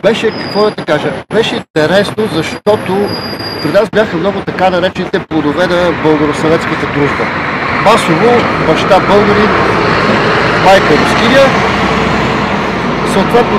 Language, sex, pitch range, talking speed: Bulgarian, male, 160-205 Hz, 95 wpm